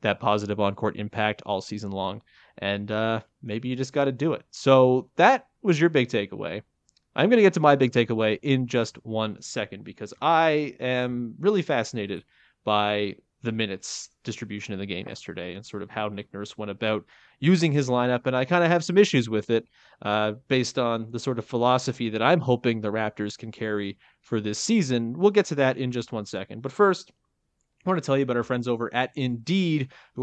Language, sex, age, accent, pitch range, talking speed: English, male, 30-49, American, 110-150 Hz, 210 wpm